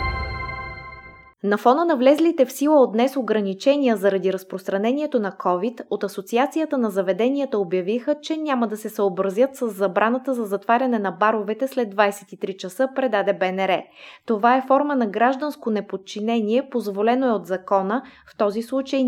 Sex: female